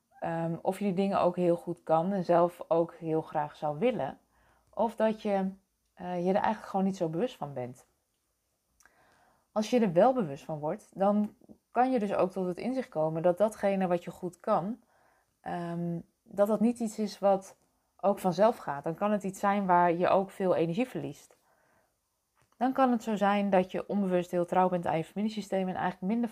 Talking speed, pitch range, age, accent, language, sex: 200 wpm, 170-205 Hz, 20-39, Dutch, Dutch, female